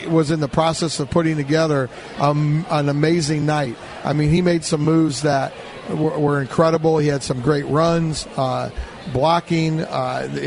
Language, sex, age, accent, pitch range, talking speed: English, male, 50-69, American, 140-160 Hz, 165 wpm